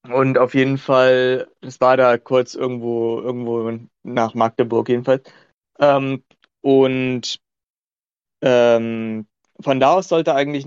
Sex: male